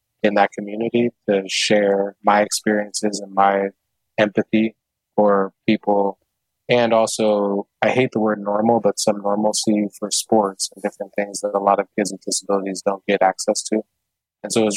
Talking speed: 170 wpm